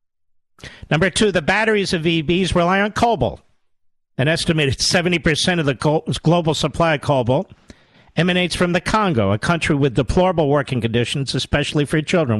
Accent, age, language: American, 50-69, English